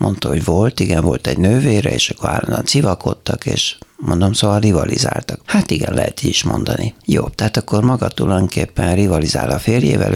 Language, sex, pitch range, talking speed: Hungarian, male, 95-115 Hz, 170 wpm